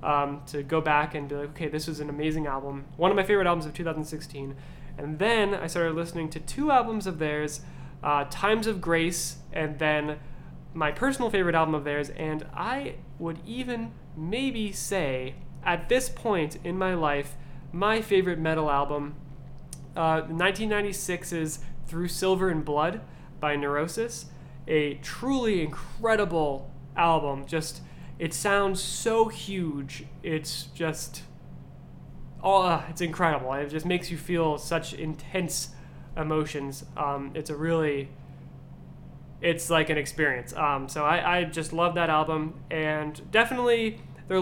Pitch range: 145-175 Hz